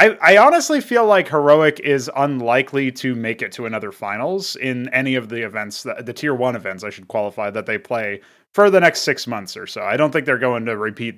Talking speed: 225 wpm